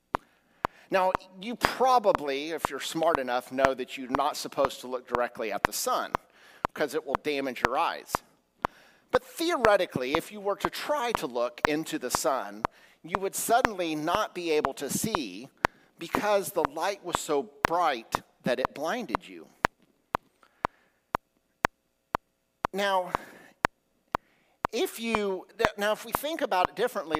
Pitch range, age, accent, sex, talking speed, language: 135-195 Hz, 50-69, American, male, 140 wpm, English